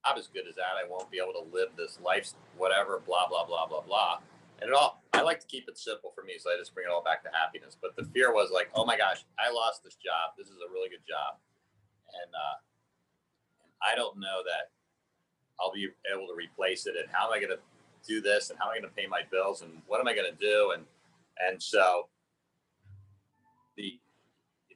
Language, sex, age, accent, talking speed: English, male, 40-59, American, 230 wpm